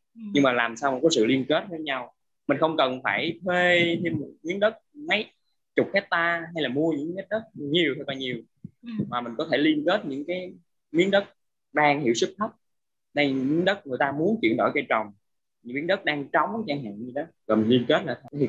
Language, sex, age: Vietnamese, male, 20-39